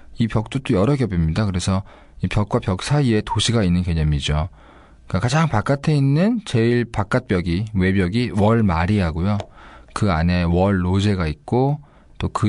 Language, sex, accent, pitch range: Korean, male, native, 85-115 Hz